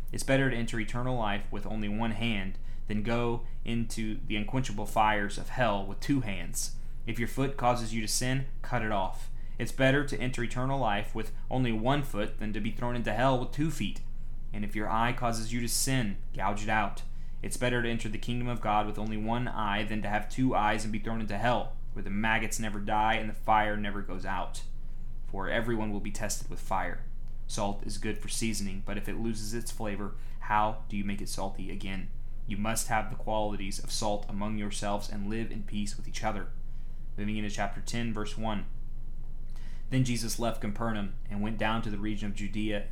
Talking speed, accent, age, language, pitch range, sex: 215 wpm, American, 20-39, English, 105-120 Hz, male